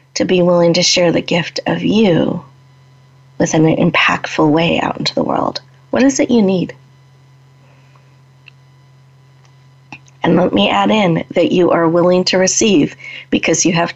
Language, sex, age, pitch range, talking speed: English, female, 30-49, 135-195 Hz, 155 wpm